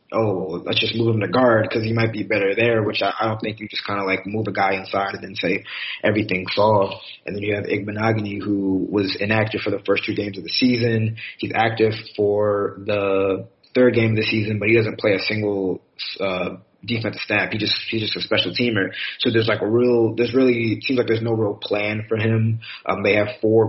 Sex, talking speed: male, 235 wpm